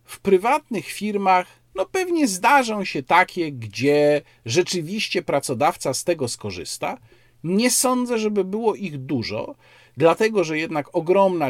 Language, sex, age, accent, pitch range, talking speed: Polish, male, 50-69, native, 125-195 Hz, 125 wpm